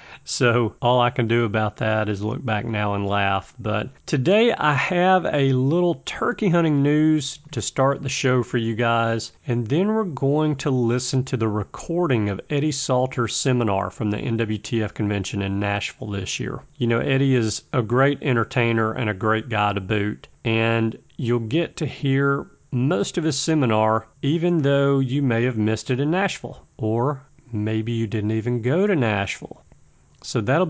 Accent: American